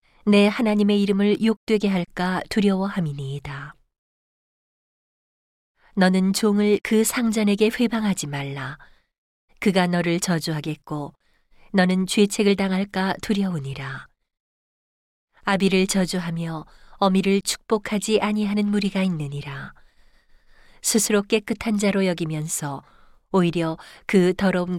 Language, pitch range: Korean, 170-205 Hz